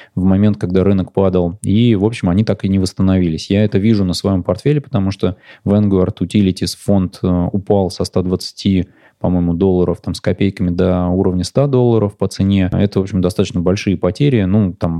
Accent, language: native, Russian